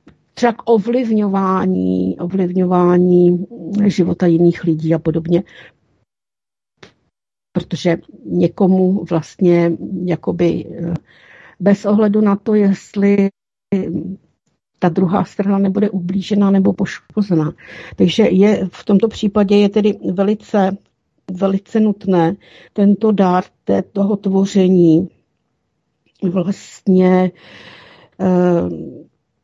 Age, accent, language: 50-69, native, Czech